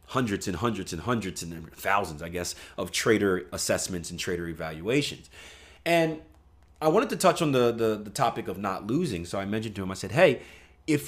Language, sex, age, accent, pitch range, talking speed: English, male, 30-49, American, 95-140 Hz, 200 wpm